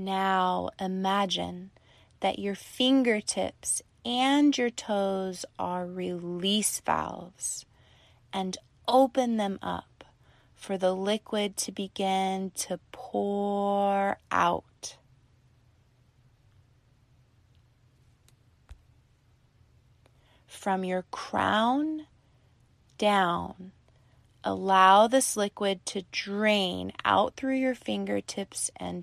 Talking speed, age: 75 wpm, 20-39